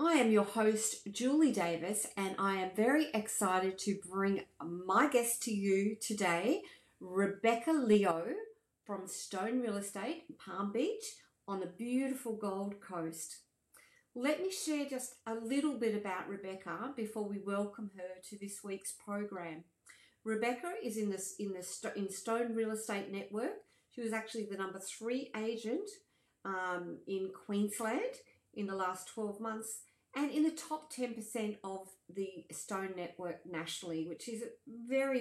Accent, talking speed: Australian, 150 wpm